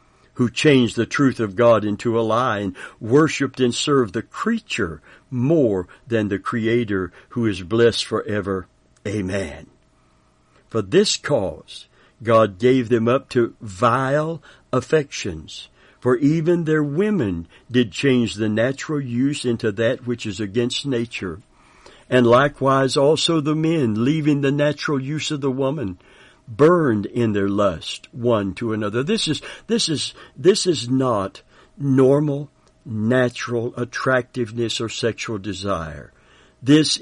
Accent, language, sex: American, English, male